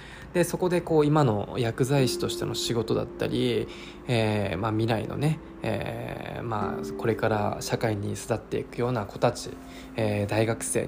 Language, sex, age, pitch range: Japanese, male, 20-39, 100-135 Hz